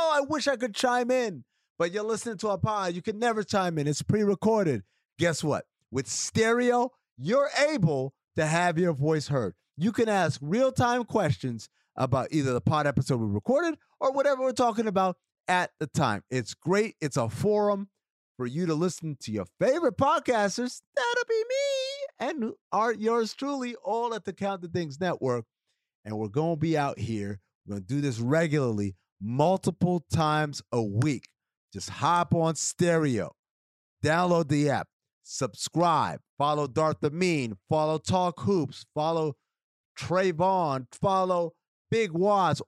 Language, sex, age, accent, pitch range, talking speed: English, male, 30-49, American, 140-220 Hz, 155 wpm